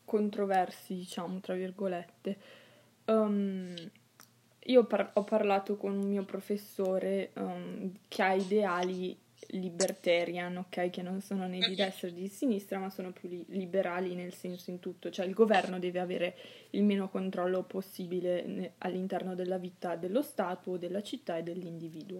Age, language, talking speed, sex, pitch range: 20-39, Italian, 150 wpm, female, 185-240 Hz